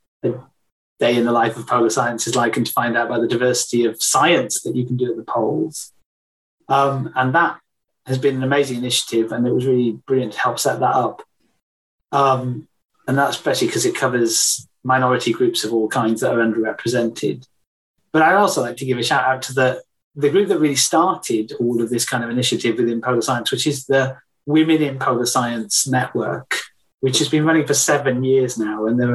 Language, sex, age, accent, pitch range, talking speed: English, male, 30-49, British, 120-145 Hz, 210 wpm